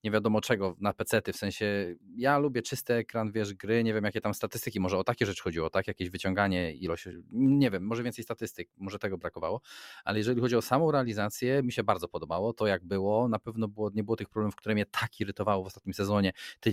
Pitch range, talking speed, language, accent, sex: 100-125 Hz, 225 wpm, Polish, native, male